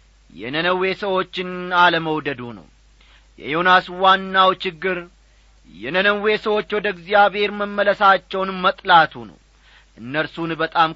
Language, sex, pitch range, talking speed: Amharic, male, 155-220 Hz, 90 wpm